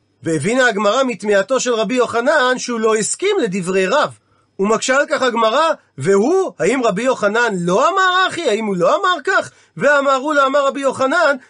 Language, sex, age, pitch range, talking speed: Hebrew, male, 40-59, 195-275 Hz, 170 wpm